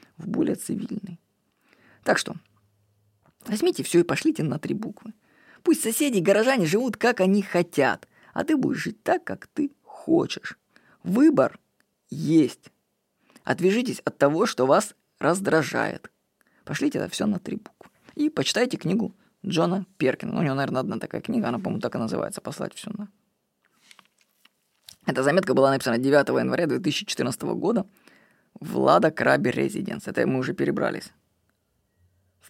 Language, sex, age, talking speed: Russian, female, 20-39, 140 wpm